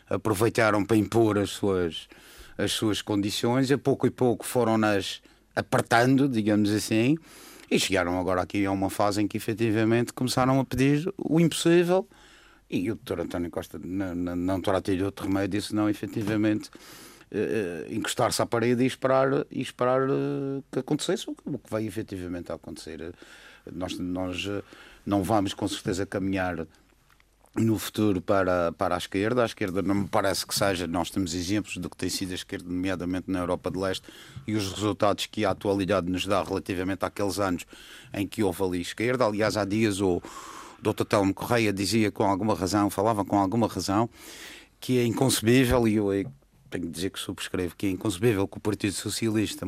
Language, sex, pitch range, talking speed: Portuguese, male, 95-115 Hz, 180 wpm